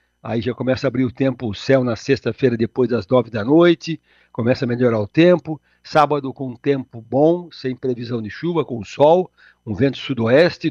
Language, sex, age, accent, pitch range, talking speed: Portuguese, male, 60-79, Brazilian, 125-155 Hz, 195 wpm